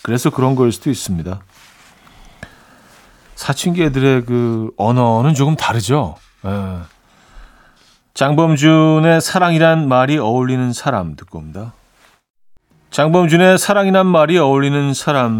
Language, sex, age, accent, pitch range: Korean, male, 40-59, native, 110-150 Hz